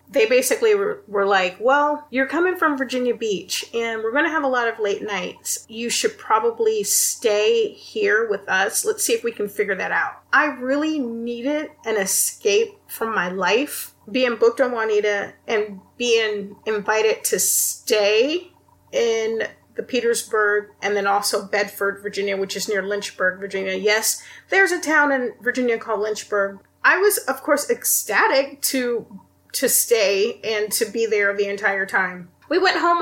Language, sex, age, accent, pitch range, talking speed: English, female, 30-49, American, 205-335 Hz, 165 wpm